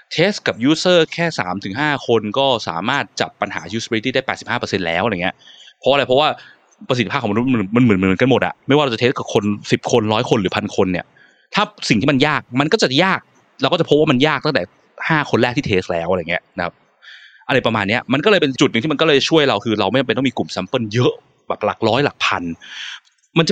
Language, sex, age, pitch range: Thai, male, 20-39, 100-135 Hz